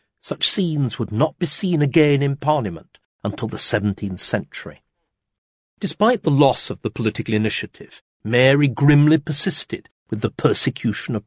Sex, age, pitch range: male, 50-69, 110-150 Hz